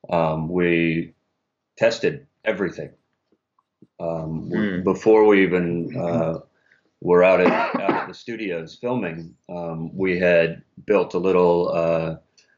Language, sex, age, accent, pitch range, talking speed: English, male, 30-49, American, 85-90 Hz, 120 wpm